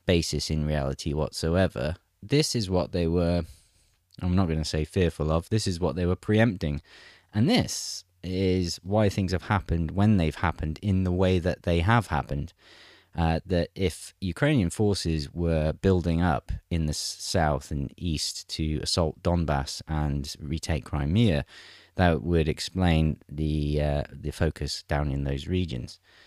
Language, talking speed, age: English, 160 wpm, 30-49